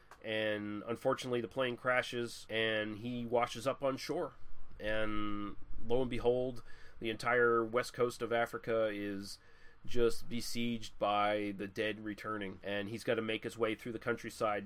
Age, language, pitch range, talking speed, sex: 30-49, English, 100-125 Hz, 155 wpm, male